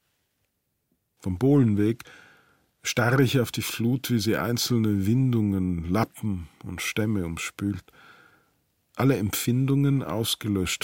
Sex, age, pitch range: male, 40-59, 95-120 Hz